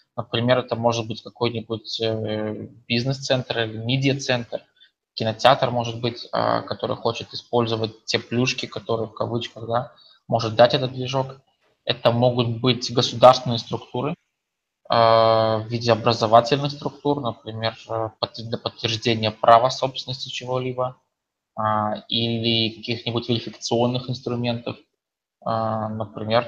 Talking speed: 100 wpm